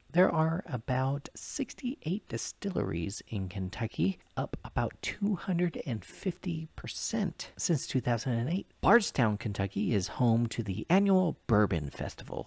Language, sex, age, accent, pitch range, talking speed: English, male, 40-59, American, 100-165 Hz, 100 wpm